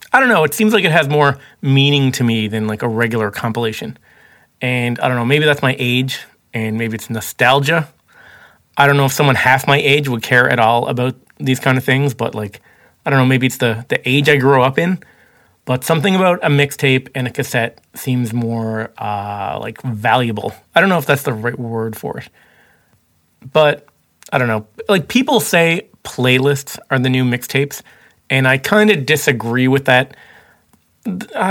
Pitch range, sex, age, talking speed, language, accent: 120-145 Hz, male, 30-49, 195 wpm, English, American